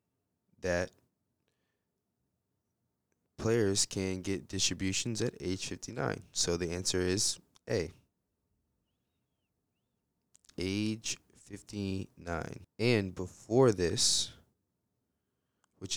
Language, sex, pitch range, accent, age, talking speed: English, male, 90-110 Hz, American, 20-39, 80 wpm